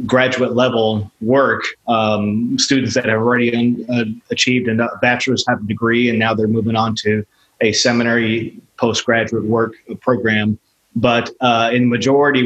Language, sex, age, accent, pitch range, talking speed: English, male, 30-49, American, 115-130 Hz, 145 wpm